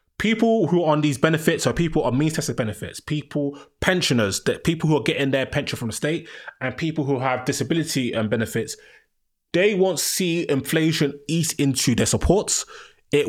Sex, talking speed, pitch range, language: male, 170 wpm, 115-155 Hz, English